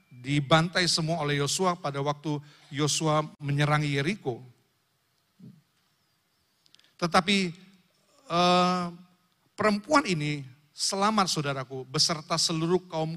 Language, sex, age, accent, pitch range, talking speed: Indonesian, male, 50-69, native, 150-190 Hz, 75 wpm